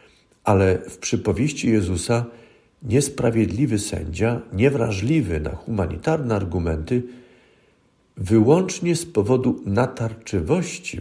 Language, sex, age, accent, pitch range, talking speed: Polish, male, 50-69, native, 95-125 Hz, 75 wpm